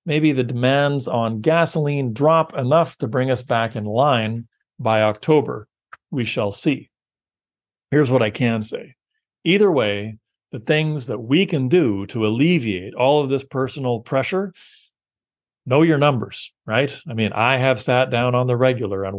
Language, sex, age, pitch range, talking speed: English, male, 40-59, 110-145 Hz, 165 wpm